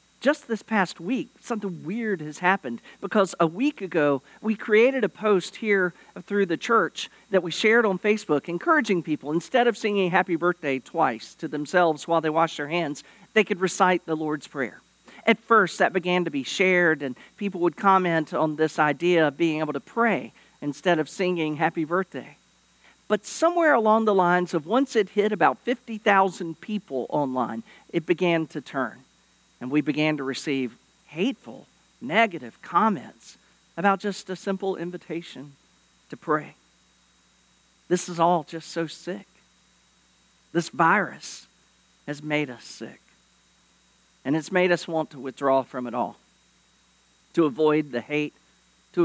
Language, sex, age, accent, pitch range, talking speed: English, male, 50-69, American, 150-195 Hz, 160 wpm